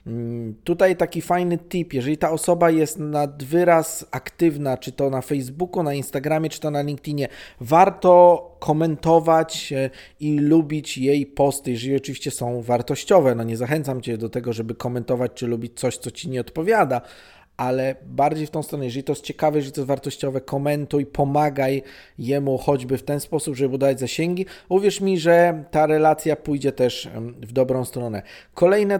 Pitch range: 135-160 Hz